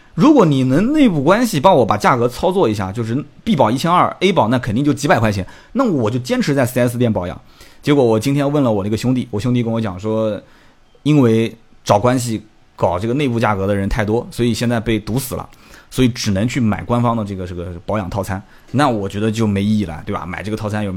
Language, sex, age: Chinese, male, 30-49